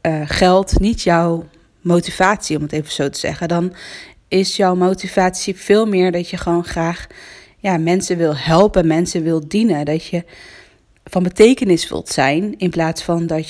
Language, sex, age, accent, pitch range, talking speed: Dutch, female, 20-39, Dutch, 170-210 Hz, 170 wpm